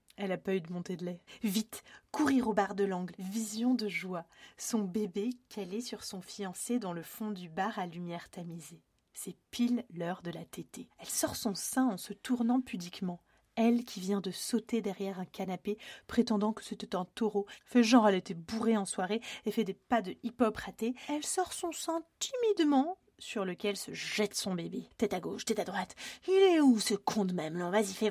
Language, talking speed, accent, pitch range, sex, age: French, 215 wpm, French, 190-230 Hz, female, 30-49